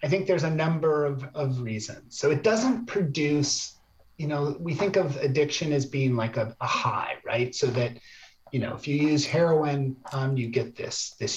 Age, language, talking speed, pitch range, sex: 30-49, English, 200 wpm, 130-155 Hz, male